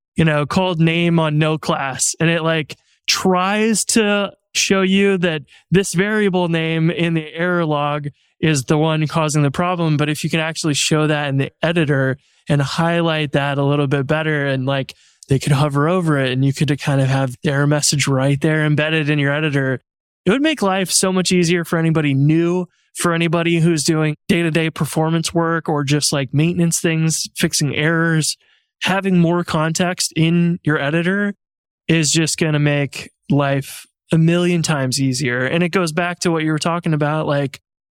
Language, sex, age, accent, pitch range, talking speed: English, male, 20-39, American, 145-170 Hz, 190 wpm